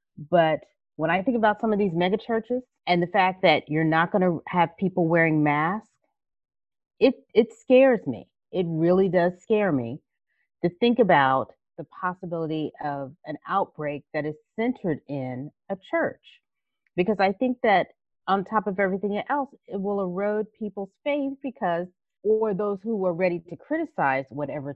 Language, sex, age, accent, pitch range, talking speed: English, female, 30-49, American, 160-215 Hz, 165 wpm